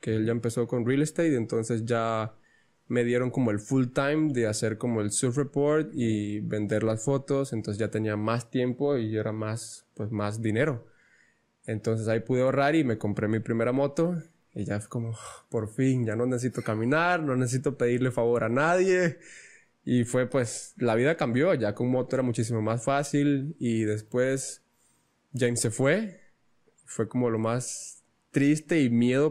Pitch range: 110-135 Hz